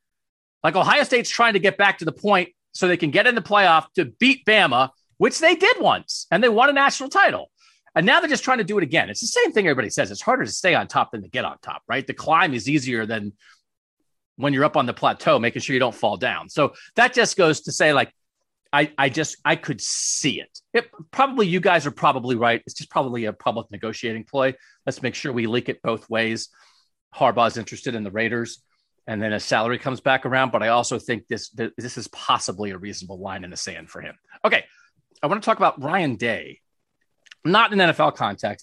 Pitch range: 115-195 Hz